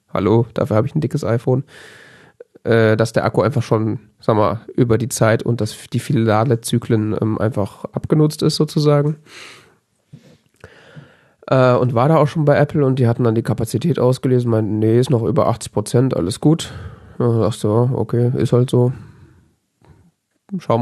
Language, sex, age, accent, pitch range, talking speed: German, male, 30-49, German, 115-145 Hz, 160 wpm